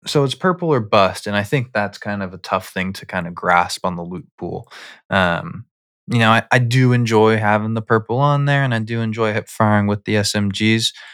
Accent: American